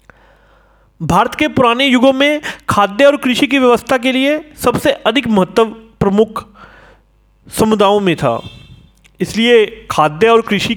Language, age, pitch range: Hindi, 40-59, 170-245 Hz